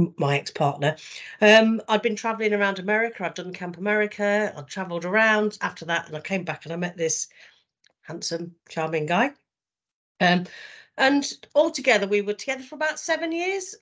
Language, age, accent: English, 40-59, British